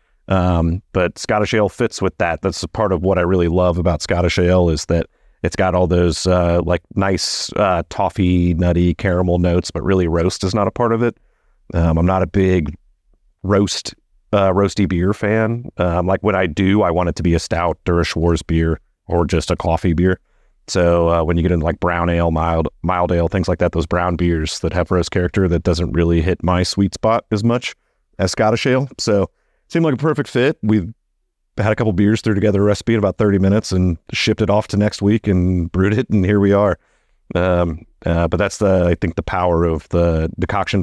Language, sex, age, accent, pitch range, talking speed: English, male, 30-49, American, 85-105 Hz, 220 wpm